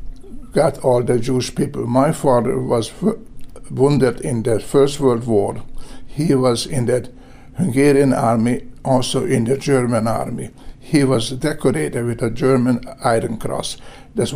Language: English